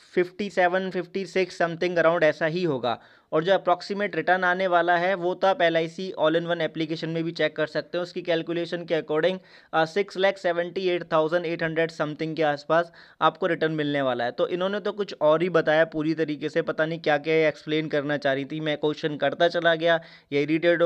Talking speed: 215 wpm